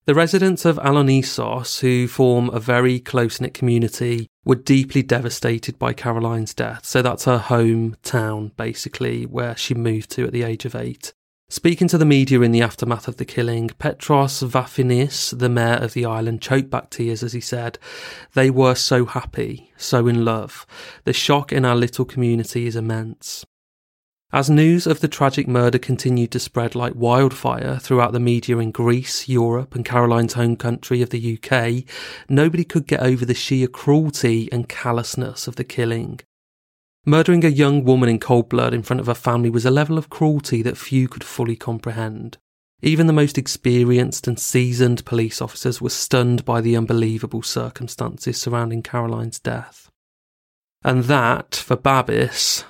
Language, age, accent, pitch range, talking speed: English, 30-49, British, 115-130 Hz, 170 wpm